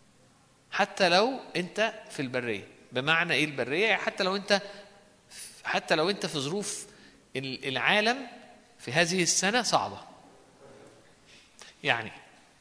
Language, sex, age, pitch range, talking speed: Arabic, male, 50-69, 145-215 Hz, 105 wpm